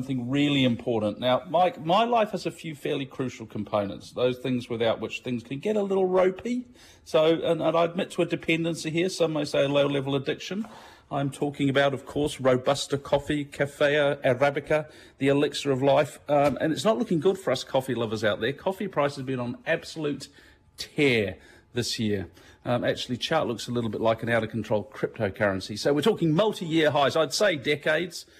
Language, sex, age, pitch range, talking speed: English, male, 40-59, 120-145 Hz, 190 wpm